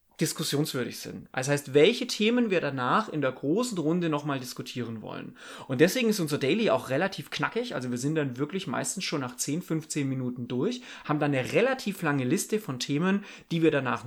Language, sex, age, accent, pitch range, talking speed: German, male, 30-49, German, 135-205 Hz, 200 wpm